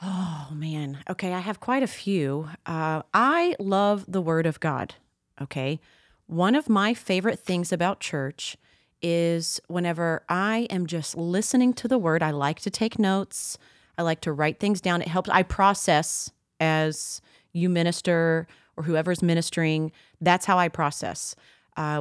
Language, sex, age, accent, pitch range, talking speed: English, female, 30-49, American, 165-215 Hz, 160 wpm